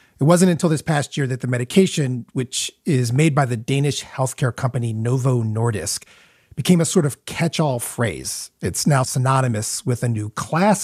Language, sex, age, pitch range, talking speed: English, male, 40-59, 120-170 Hz, 175 wpm